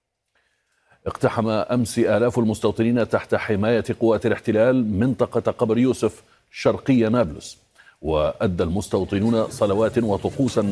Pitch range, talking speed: 100-120 Hz, 95 wpm